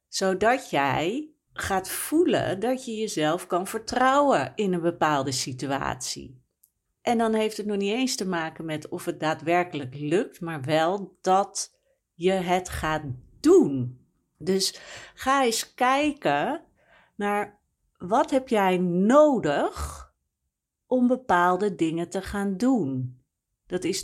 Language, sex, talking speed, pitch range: Dutch, female, 125 wpm, 155-230 Hz